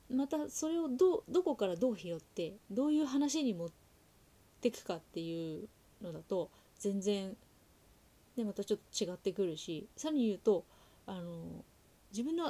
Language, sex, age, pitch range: Japanese, female, 30-49, 180-245 Hz